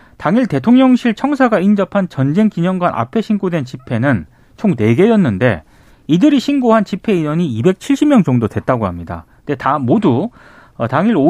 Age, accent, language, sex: 30-49, native, Korean, male